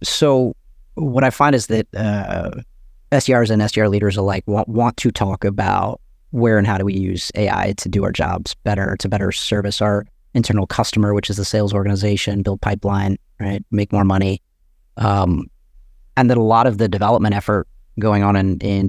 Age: 30-49